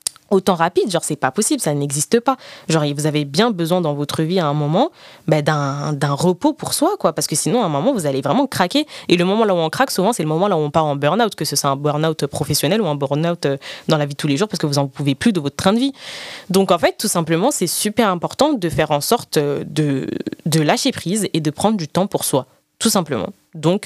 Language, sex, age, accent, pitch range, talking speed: French, female, 20-39, French, 150-200 Hz, 265 wpm